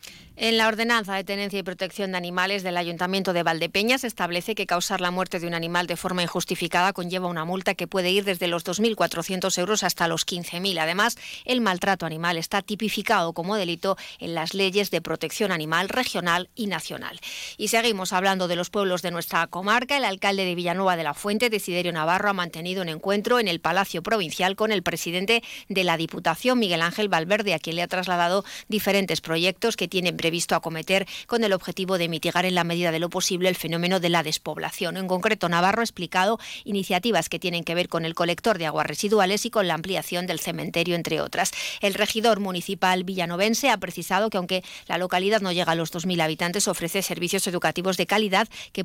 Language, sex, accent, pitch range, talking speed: Spanish, female, Spanish, 175-205 Hz, 200 wpm